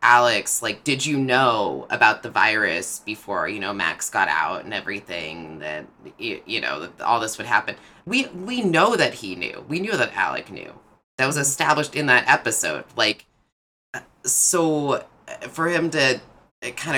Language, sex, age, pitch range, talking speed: English, female, 20-39, 120-155 Hz, 170 wpm